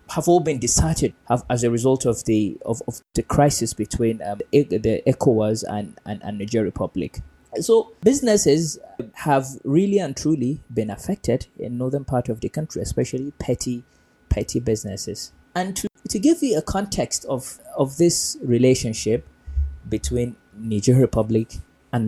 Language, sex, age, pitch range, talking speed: English, male, 20-39, 110-140 Hz, 155 wpm